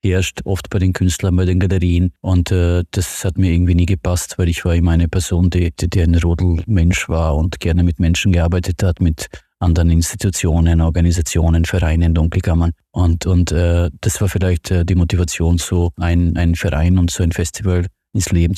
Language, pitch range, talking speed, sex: German, 85-95 Hz, 185 wpm, male